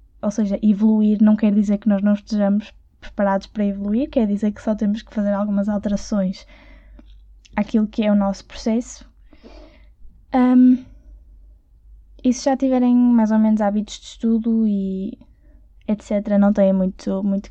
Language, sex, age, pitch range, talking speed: Portuguese, female, 10-29, 200-245 Hz, 155 wpm